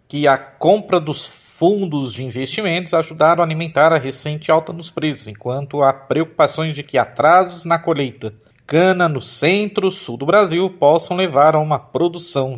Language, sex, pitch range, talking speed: Portuguese, male, 130-160 Hz, 160 wpm